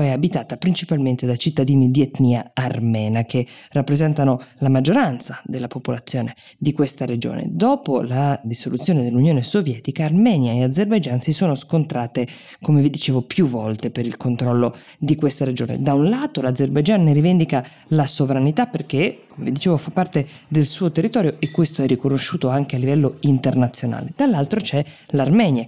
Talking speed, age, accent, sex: 155 wpm, 20-39, native, female